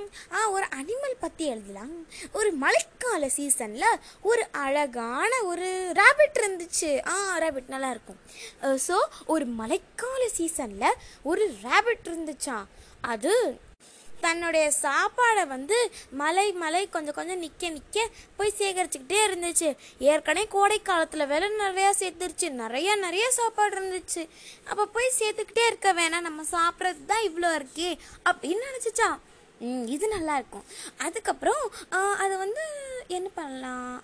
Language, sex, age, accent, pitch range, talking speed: Tamil, female, 20-39, native, 305-410 Hz, 95 wpm